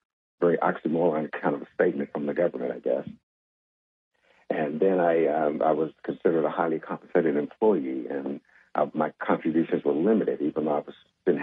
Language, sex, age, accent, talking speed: English, male, 60-79, American, 175 wpm